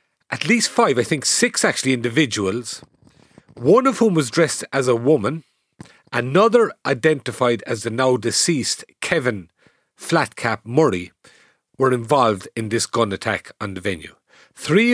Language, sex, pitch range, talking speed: English, male, 110-155 Hz, 140 wpm